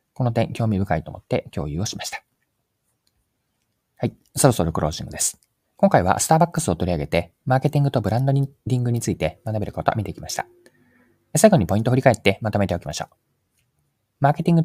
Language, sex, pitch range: Japanese, male, 90-130 Hz